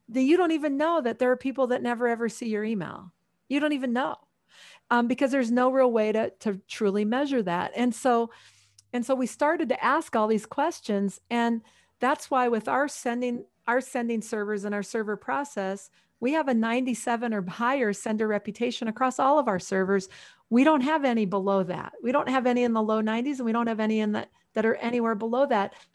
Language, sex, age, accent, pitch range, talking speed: English, female, 40-59, American, 205-255 Hz, 215 wpm